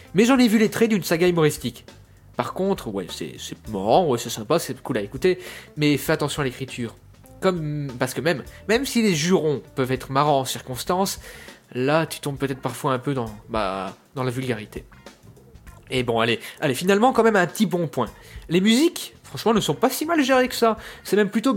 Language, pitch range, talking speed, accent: French, 120-175 Hz, 215 wpm, French